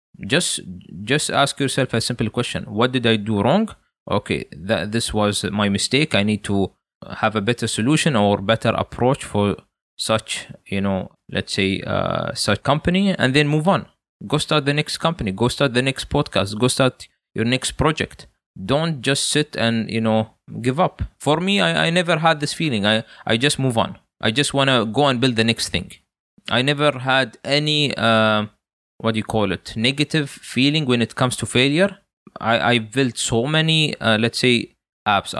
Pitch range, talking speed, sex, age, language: 110-145 Hz, 195 wpm, male, 20-39, English